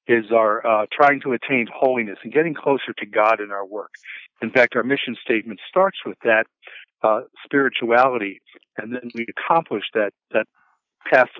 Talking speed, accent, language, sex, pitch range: 170 wpm, American, English, male, 110-125 Hz